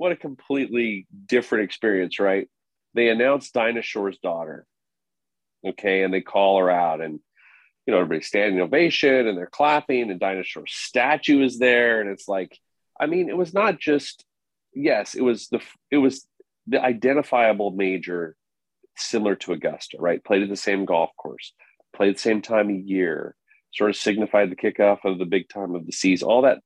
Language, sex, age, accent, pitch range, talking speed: English, male, 40-59, American, 100-145 Hz, 180 wpm